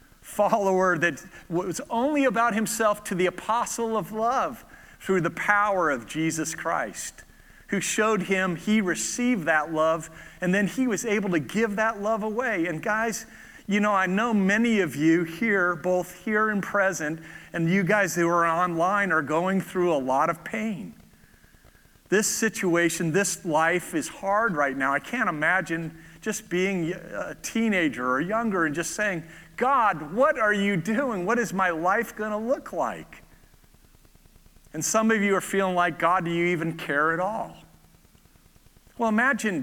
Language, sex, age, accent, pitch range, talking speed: English, male, 40-59, American, 165-215 Hz, 165 wpm